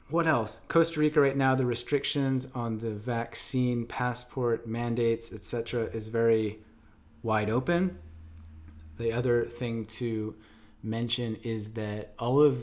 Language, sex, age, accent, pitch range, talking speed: English, male, 30-49, American, 105-130 Hz, 130 wpm